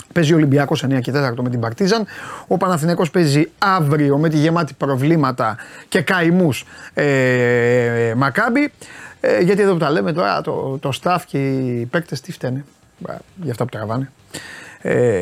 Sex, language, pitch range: male, Greek, 130-180 Hz